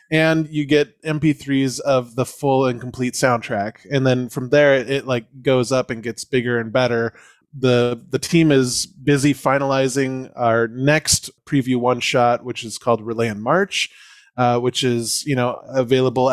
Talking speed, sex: 175 wpm, male